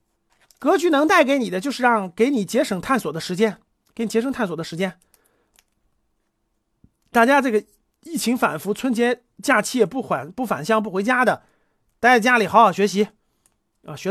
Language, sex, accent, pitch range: Chinese, male, native, 205-300 Hz